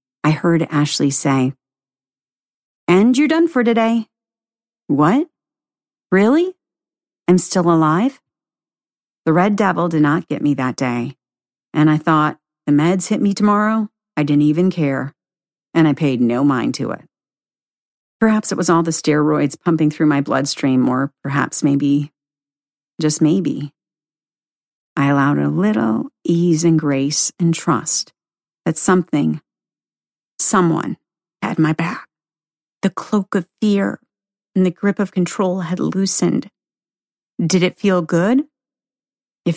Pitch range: 145-195 Hz